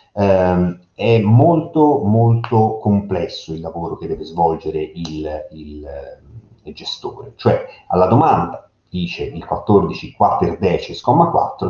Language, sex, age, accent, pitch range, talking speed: Italian, male, 40-59, native, 90-115 Hz, 125 wpm